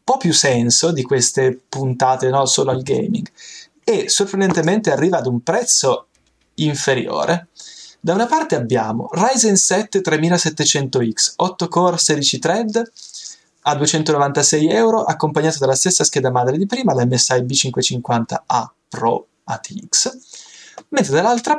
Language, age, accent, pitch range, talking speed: Italian, 20-39, native, 130-180 Hz, 125 wpm